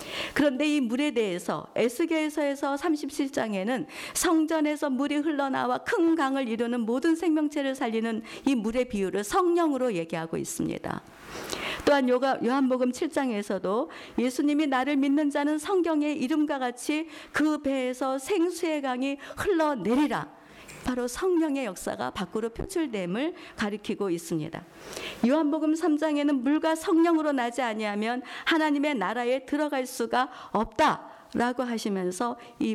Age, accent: 50-69, native